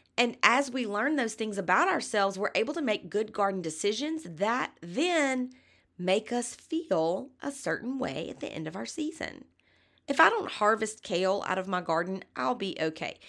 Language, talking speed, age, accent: English, 185 wpm, 30-49, American